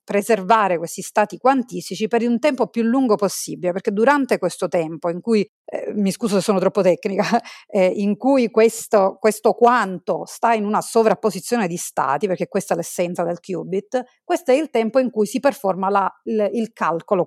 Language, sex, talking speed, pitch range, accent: Italian, female, 185 wpm, 185-235 Hz, native